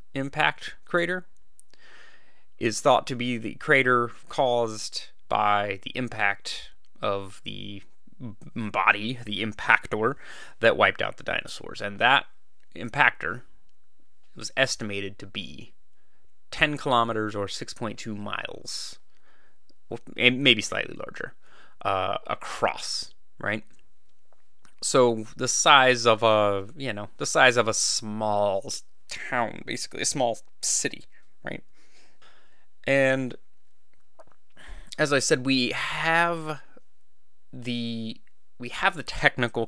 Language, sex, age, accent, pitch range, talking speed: English, male, 30-49, American, 105-130 Hz, 105 wpm